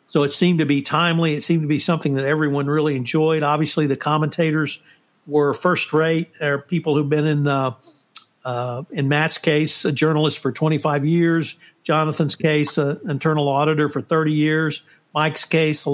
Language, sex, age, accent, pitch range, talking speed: English, male, 50-69, American, 140-160 Hz, 180 wpm